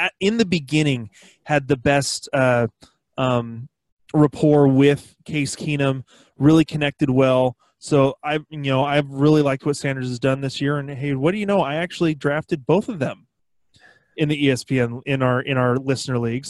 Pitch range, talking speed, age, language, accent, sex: 135-170 Hz, 180 wpm, 20-39, English, American, male